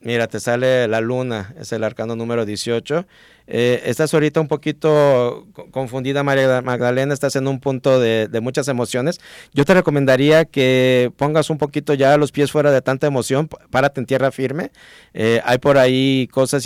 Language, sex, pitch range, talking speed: Spanish, male, 120-140 Hz, 175 wpm